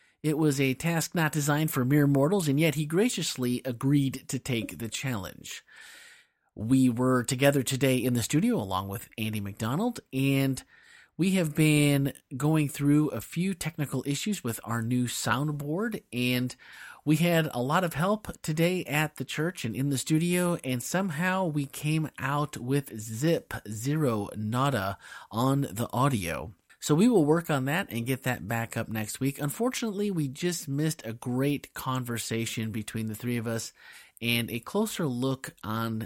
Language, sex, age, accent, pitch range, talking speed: English, male, 30-49, American, 110-150 Hz, 165 wpm